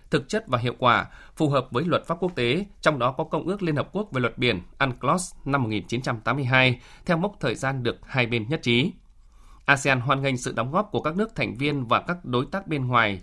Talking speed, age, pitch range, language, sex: 235 wpm, 20-39, 125-155 Hz, Vietnamese, male